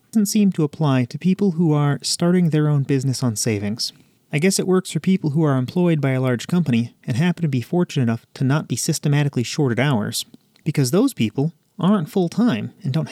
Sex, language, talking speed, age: male, English, 210 wpm, 30-49